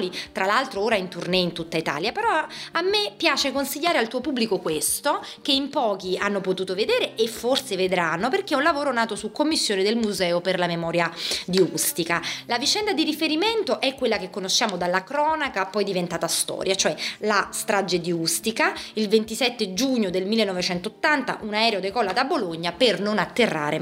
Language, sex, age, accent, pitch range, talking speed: Italian, female, 30-49, native, 185-270 Hz, 180 wpm